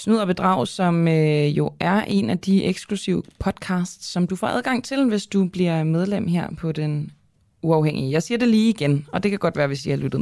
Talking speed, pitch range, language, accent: 225 wpm, 145-190 Hz, Danish, native